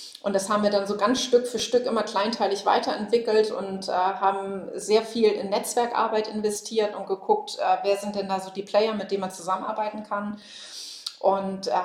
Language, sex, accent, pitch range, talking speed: English, female, German, 195-220 Hz, 190 wpm